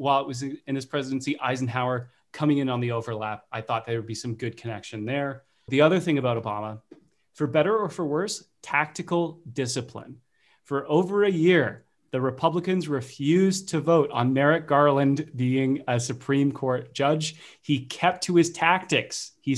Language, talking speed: English, 170 wpm